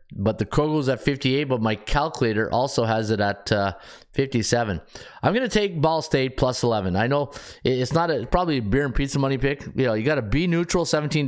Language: English